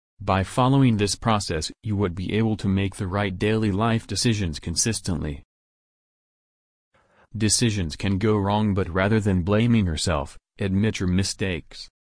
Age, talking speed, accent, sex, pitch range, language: 30-49, 140 wpm, American, male, 95-115 Hz, English